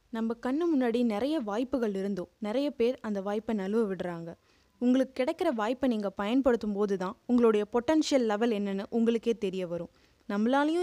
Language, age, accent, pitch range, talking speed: Tamil, 20-39, native, 200-245 Hz, 135 wpm